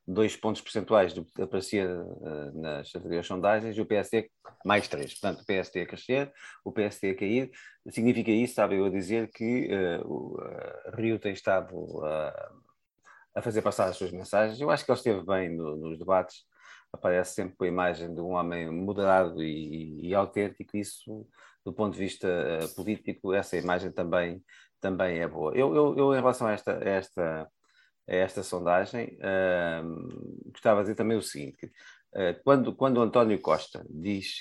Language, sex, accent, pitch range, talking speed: Portuguese, male, Portuguese, 90-110 Hz, 180 wpm